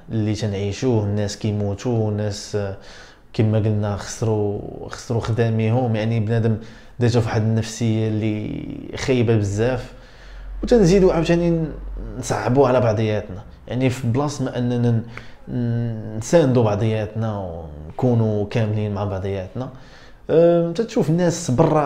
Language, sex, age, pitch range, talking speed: Arabic, male, 20-39, 110-150 Hz, 105 wpm